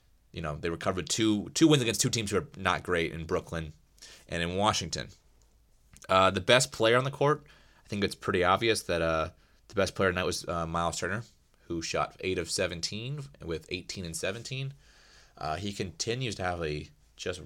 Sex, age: male, 20-39